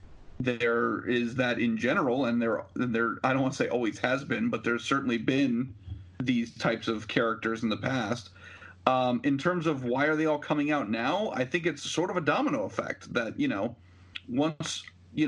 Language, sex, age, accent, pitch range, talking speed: English, male, 40-59, American, 110-140 Hz, 210 wpm